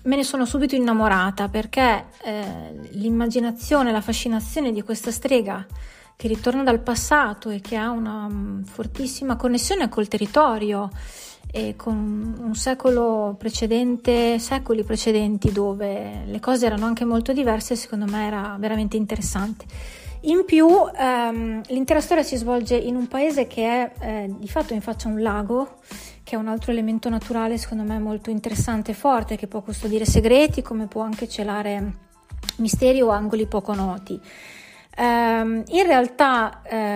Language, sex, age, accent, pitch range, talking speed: Italian, female, 30-49, native, 210-245 Hz, 150 wpm